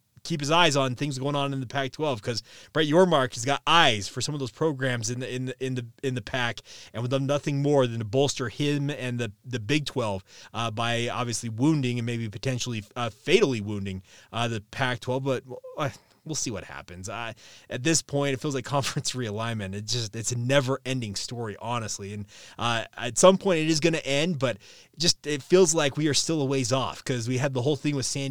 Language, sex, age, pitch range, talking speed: English, male, 20-39, 115-145 Hz, 230 wpm